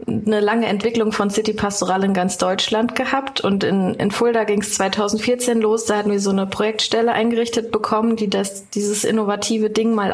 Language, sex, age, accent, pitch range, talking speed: German, female, 20-39, German, 200-230 Hz, 185 wpm